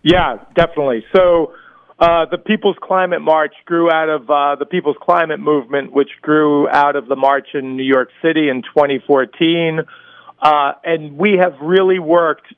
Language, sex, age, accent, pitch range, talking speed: English, male, 40-59, American, 145-170 Hz, 160 wpm